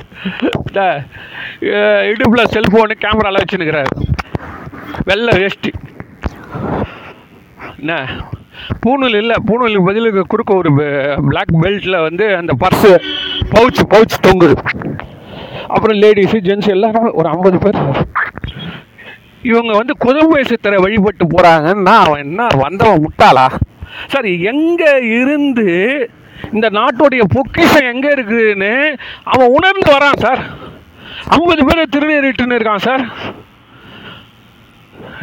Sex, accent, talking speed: male, native, 50 wpm